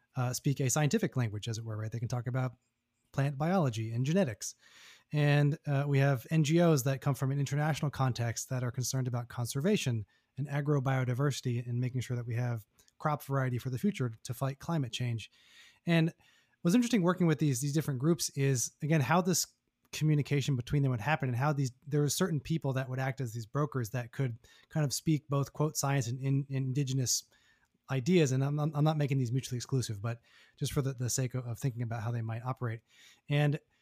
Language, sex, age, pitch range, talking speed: English, male, 20-39, 125-150 Hz, 205 wpm